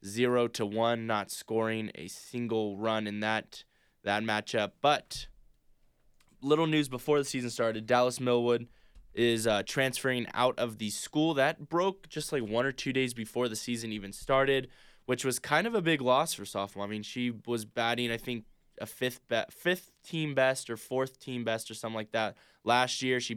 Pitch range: 110-130 Hz